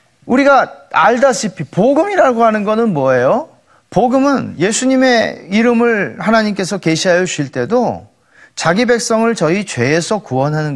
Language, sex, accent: Korean, male, native